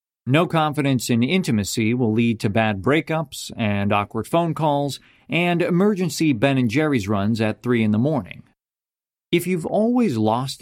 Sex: male